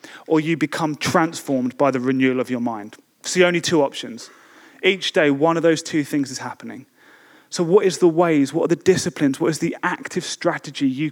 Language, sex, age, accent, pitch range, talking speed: English, male, 30-49, British, 135-165 Hz, 210 wpm